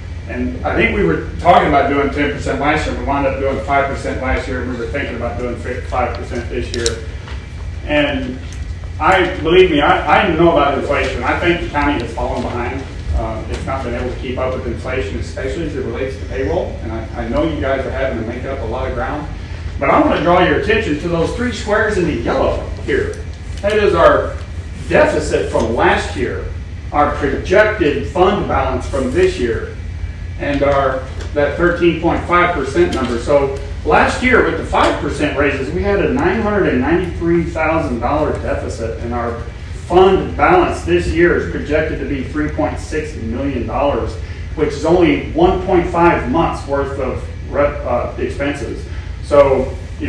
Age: 40-59